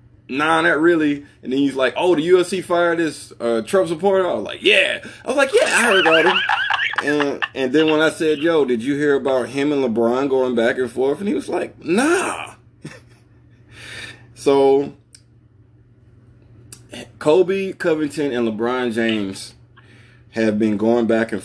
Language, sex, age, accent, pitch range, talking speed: English, male, 20-39, American, 115-140 Hz, 170 wpm